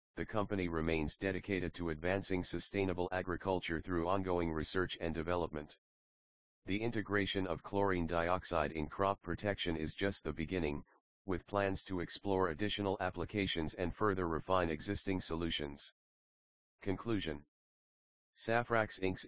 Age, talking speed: 40-59, 120 wpm